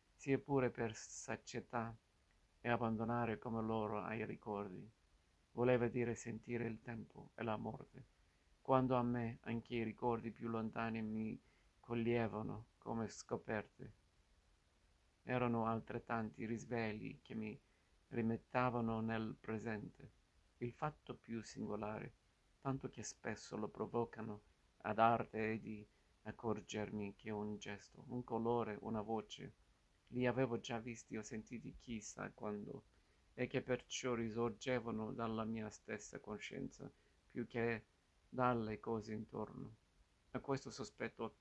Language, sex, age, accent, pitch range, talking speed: Italian, male, 50-69, native, 105-120 Hz, 120 wpm